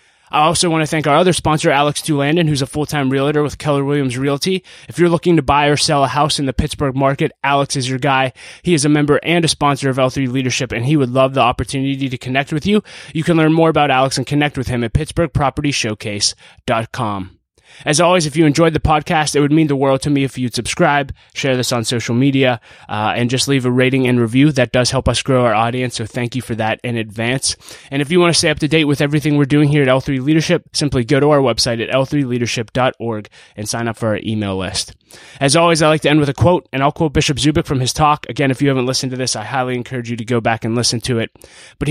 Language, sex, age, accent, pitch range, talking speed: English, male, 20-39, American, 120-150 Hz, 255 wpm